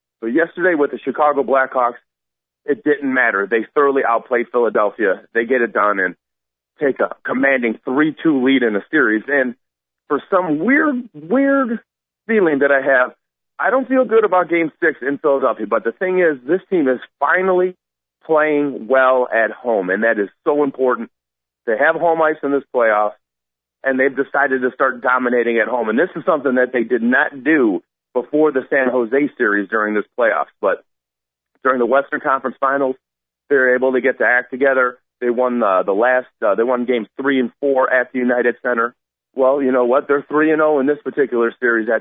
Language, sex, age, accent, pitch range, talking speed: English, male, 40-59, American, 115-150 Hz, 195 wpm